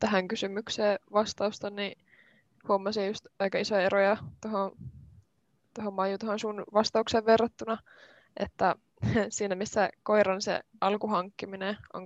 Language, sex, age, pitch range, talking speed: Finnish, female, 20-39, 195-215 Hz, 115 wpm